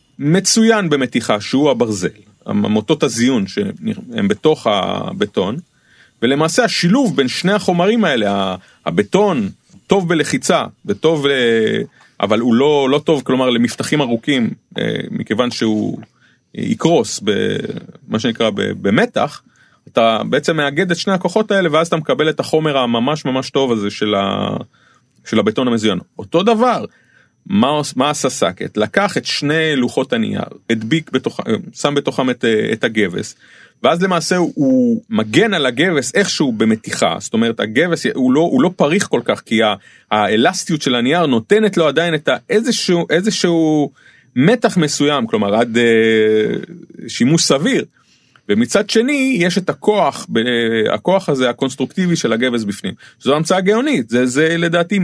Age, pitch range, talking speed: 30-49, 130-210 Hz, 130 wpm